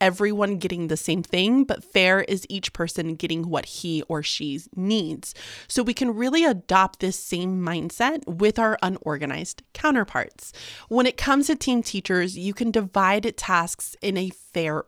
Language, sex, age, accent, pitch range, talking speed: English, female, 30-49, American, 175-240 Hz, 165 wpm